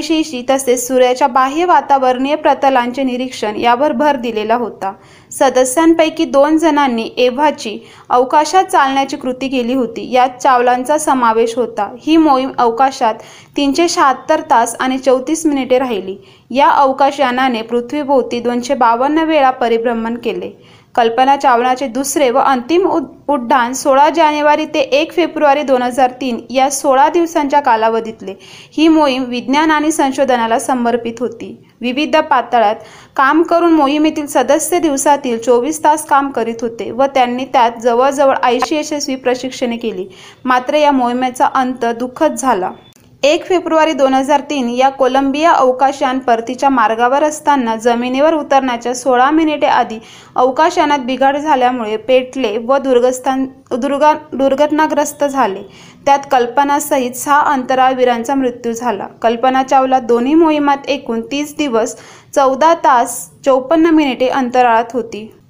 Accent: native